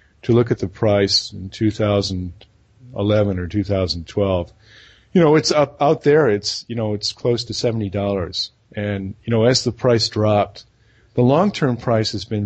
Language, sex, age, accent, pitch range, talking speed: English, male, 40-59, American, 100-125 Hz, 170 wpm